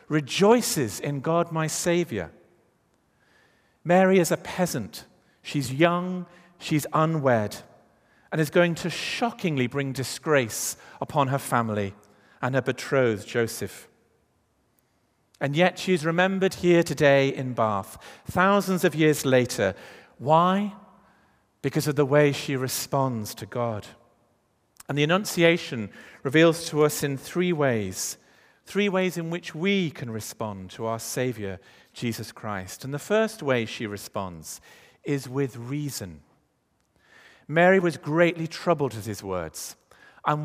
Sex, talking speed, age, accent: male, 130 wpm, 50-69, British